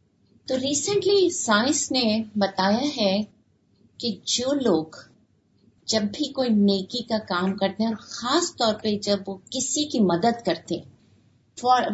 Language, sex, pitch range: Urdu, female, 200-265 Hz